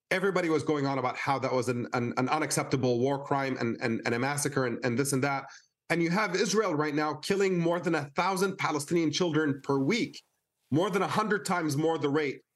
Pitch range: 130-160 Hz